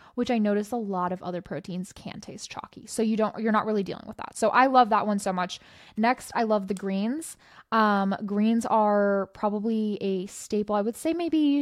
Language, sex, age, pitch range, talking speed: English, female, 10-29, 195-225 Hz, 215 wpm